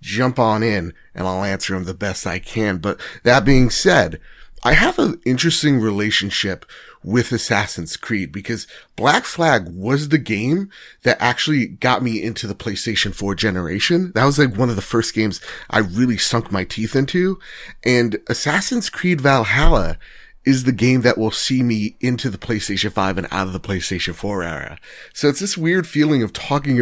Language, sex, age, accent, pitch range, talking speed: English, male, 30-49, American, 100-130 Hz, 180 wpm